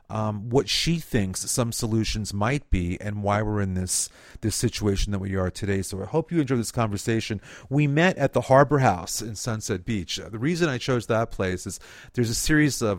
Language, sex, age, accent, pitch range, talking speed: English, male, 40-59, American, 100-120 Hz, 215 wpm